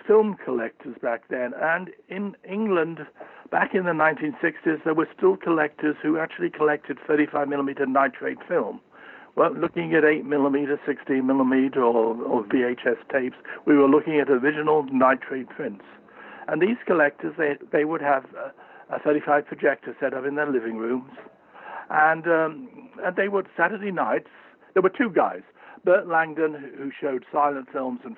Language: English